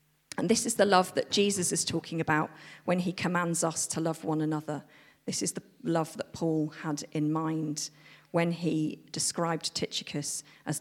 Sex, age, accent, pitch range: female, 40-59, British, 155-215 Hz